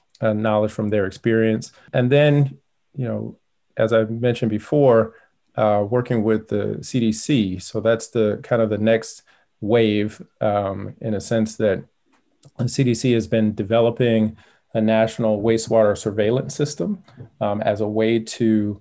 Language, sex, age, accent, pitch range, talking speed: English, male, 30-49, American, 105-120 Hz, 145 wpm